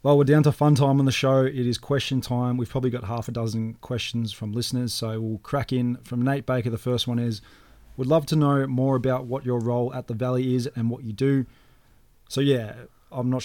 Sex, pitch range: male, 105-120 Hz